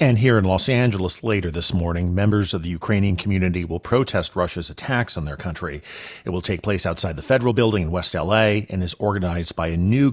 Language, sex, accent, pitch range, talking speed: English, male, American, 90-120 Hz, 220 wpm